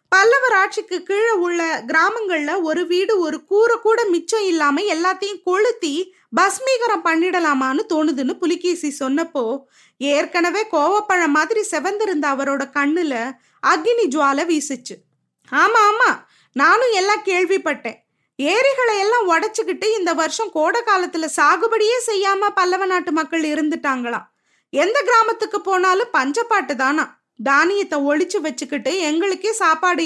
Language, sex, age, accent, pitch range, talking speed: Tamil, female, 20-39, native, 310-410 Hz, 110 wpm